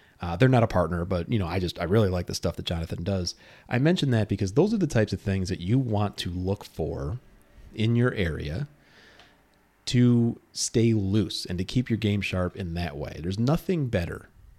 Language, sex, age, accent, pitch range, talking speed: English, male, 30-49, American, 85-110 Hz, 215 wpm